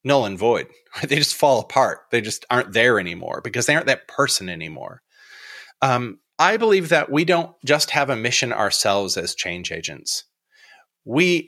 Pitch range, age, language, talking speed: 115-190 Hz, 30-49, English, 170 wpm